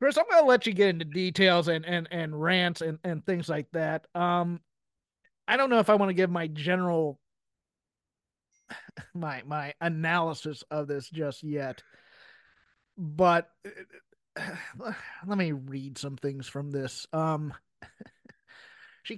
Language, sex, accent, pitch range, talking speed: English, male, American, 170-215 Hz, 145 wpm